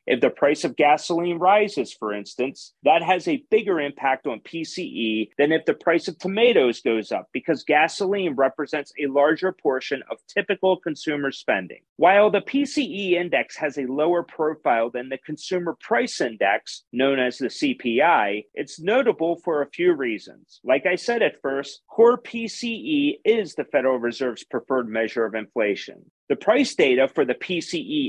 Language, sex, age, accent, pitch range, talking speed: English, male, 40-59, American, 140-210 Hz, 165 wpm